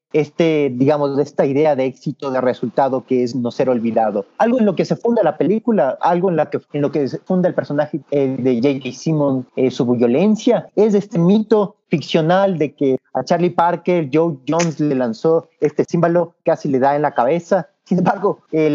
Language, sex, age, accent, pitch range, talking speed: Spanish, male, 40-59, Mexican, 140-195 Hz, 200 wpm